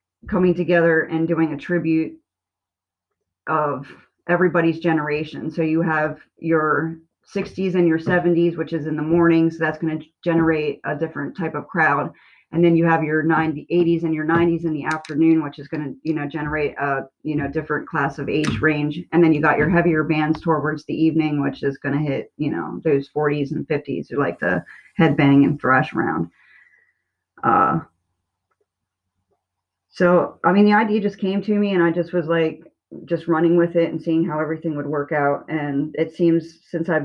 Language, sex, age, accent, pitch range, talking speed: English, female, 30-49, American, 145-165 Hz, 195 wpm